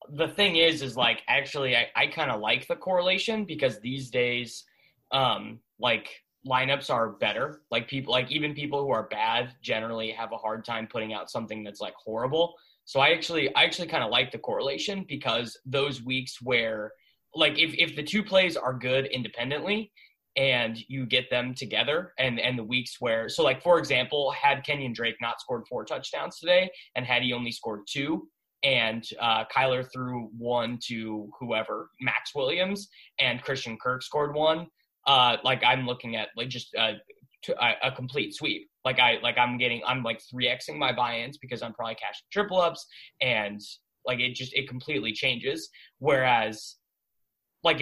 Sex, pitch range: male, 115-150 Hz